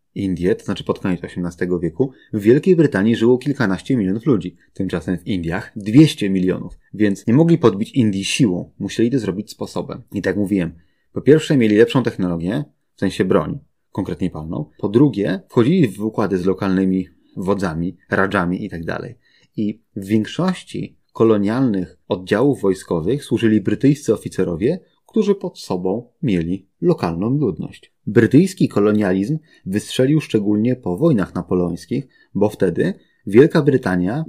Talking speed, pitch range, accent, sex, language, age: 140 wpm, 95-130 Hz, native, male, Polish, 30-49